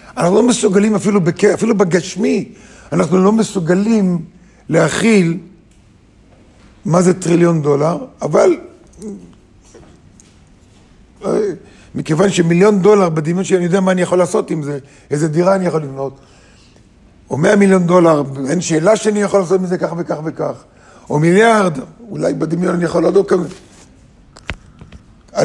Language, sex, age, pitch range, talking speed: Hebrew, male, 50-69, 150-200 Hz, 125 wpm